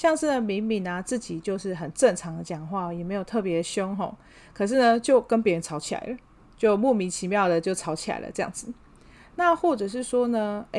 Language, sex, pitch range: Chinese, female, 180-235 Hz